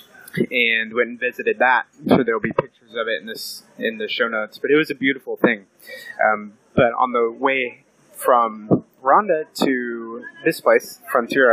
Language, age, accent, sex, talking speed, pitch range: English, 30-49, American, male, 175 wpm, 120-195 Hz